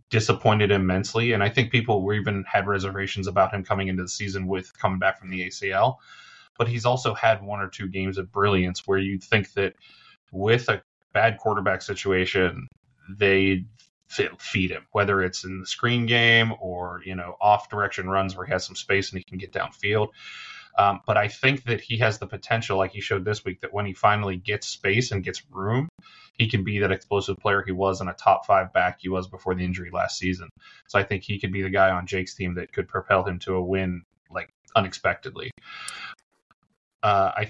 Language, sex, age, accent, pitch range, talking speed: English, male, 30-49, American, 95-110 Hz, 210 wpm